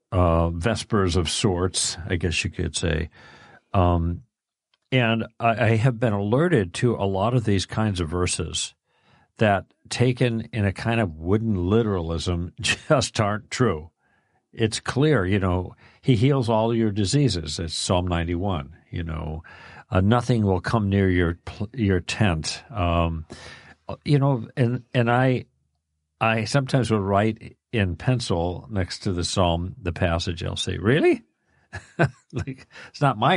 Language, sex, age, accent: English, male, 50-69, American